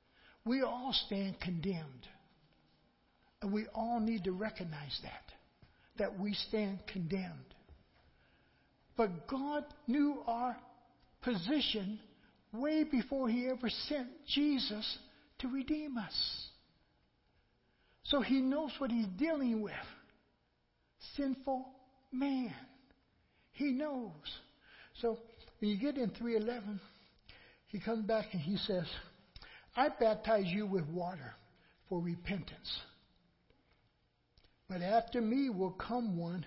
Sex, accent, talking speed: male, American, 105 wpm